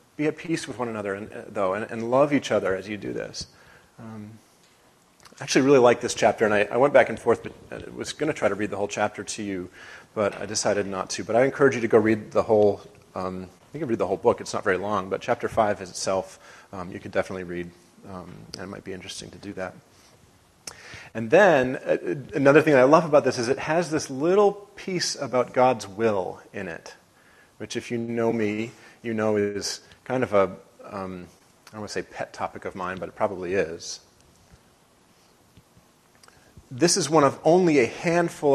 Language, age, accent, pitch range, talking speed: English, 30-49, American, 100-135 Hz, 220 wpm